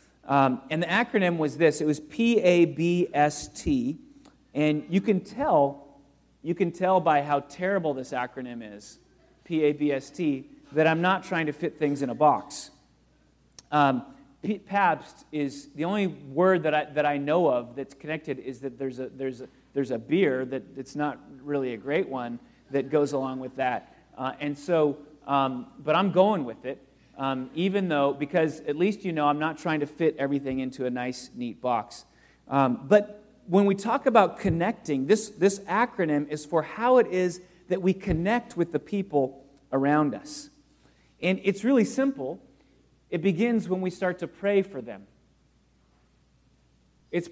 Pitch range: 135-185 Hz